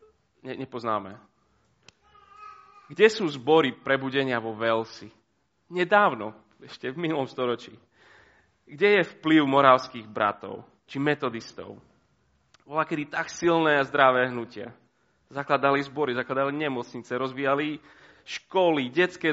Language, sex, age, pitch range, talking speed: Slovak, male, 30-49, 115-165 Hz, 100 wpm